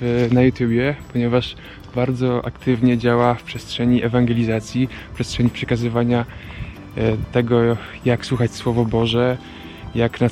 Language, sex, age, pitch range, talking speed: Polish, male, 20-39, 115-125 Hz, 110 wpm